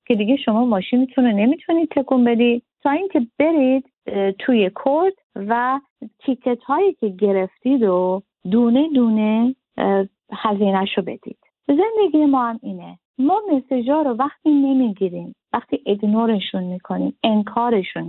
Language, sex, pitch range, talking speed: Arabic, female, 195-260 Hz, 125 wpm